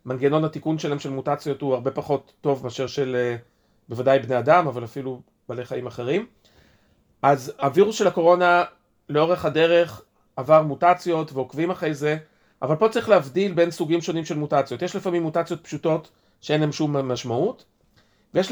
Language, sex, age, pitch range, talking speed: Hebrew, male, 40-59, 140-175 Hz, 155 wpm